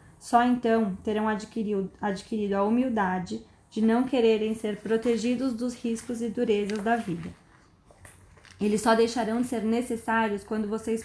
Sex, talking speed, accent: female, 135 wpm, Brazilian